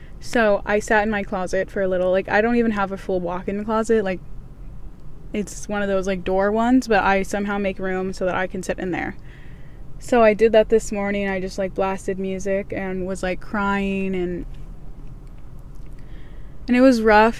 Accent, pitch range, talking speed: American, 190-210 Hz, 200 wpm